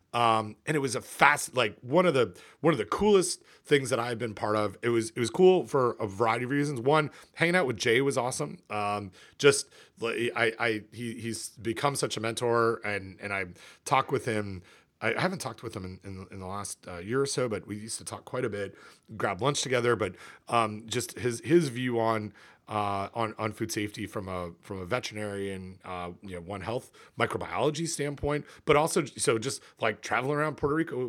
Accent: American